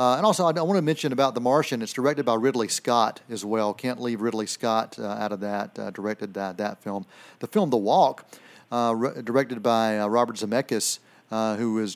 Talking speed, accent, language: 225 wpm, American, English